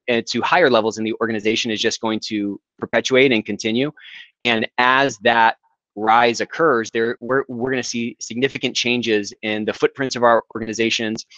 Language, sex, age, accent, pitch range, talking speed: English, male, 20-39, American, 110-125 Hz, 170 wpm